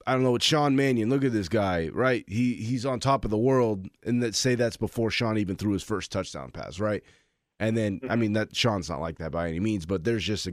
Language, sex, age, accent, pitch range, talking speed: English, male, 20-39, American, 95-115 Hz, 270 wpm